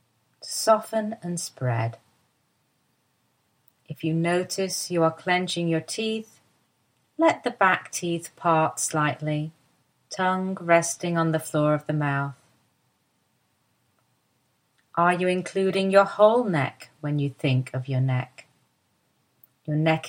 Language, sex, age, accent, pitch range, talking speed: English, female, 40-59, British, 135-185 Hz, 120 wpm